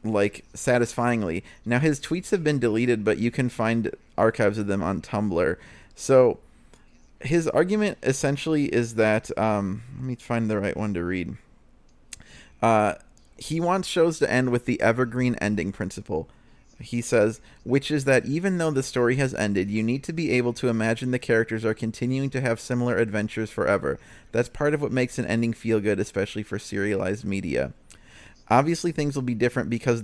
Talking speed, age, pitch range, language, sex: 180 wpm, 30-49, 110-130 Hz, English, male